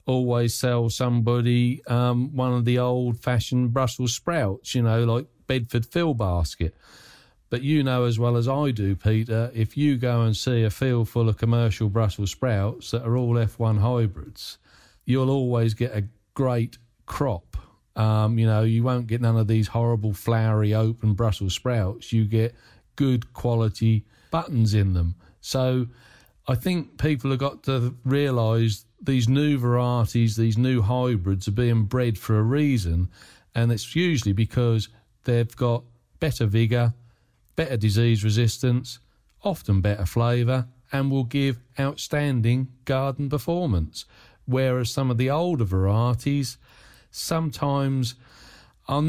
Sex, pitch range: male, 110-130 Hz